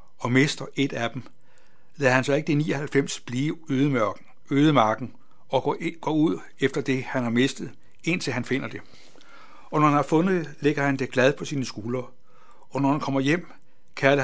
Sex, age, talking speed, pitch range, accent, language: male, 60-79, 185 wpm, 120-145 Hz, native, Danish